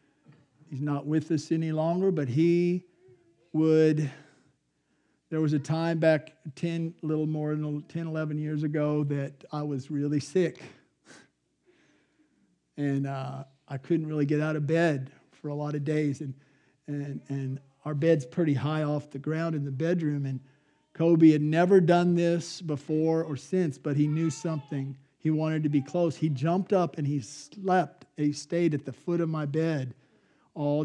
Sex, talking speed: male, 170 wpm